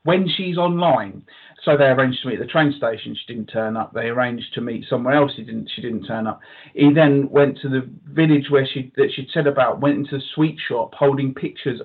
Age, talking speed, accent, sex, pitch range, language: 40-59, 240 wpm, British, male, 120-150 Hz, English